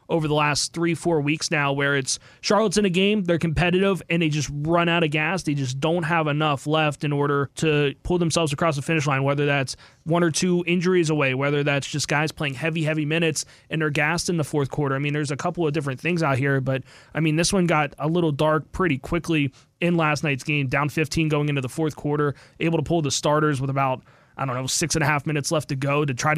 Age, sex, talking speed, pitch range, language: 20-39, male, 250 wpm, 145-170 Hz, English